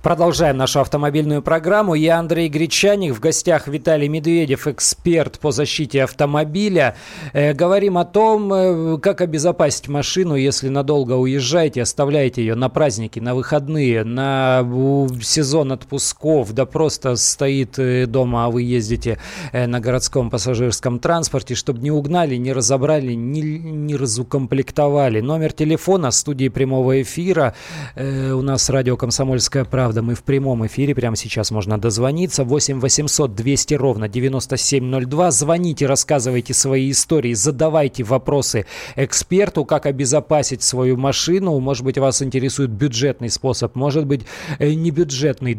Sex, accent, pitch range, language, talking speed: male, native, 125-150 Hz, Russian, 130 wpm